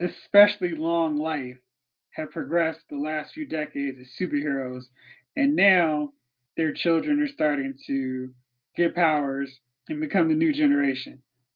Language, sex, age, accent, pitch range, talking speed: English, male, 30-49, American, 135-185 Hz, 130 wpm